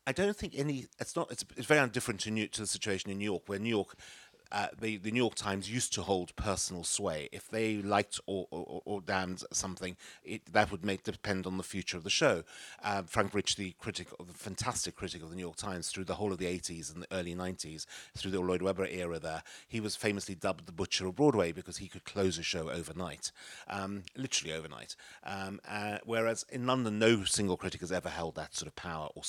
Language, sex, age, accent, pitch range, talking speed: English, male, 40-59, British, 90-115 Hz, 235 wpm